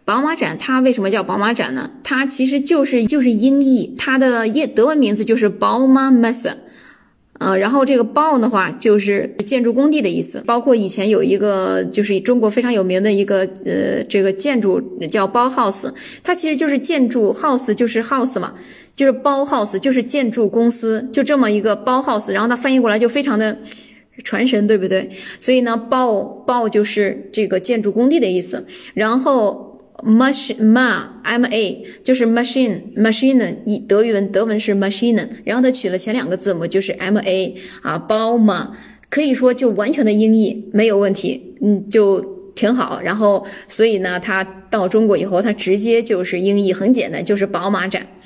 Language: Chinese